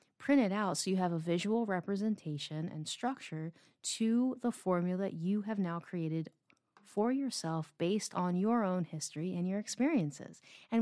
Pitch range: 165-215 Hz